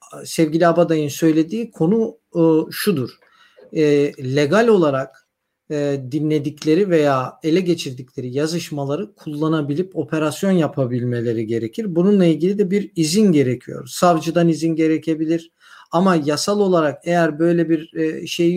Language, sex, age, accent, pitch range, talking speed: Turkish, male, 50-69, native, 150-185 Hz, 115 wpm